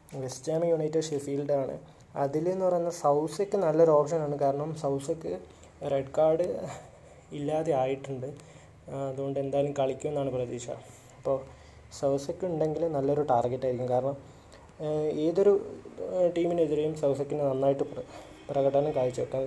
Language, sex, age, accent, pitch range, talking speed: Malayalam, male, 20-39, native, 135-155 Hz, 100 wpm